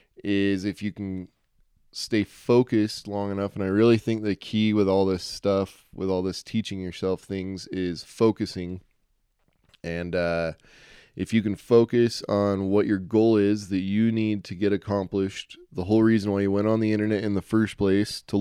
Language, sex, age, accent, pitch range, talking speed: English, male, 20-39, American, 100-115 Hz, 185 wpm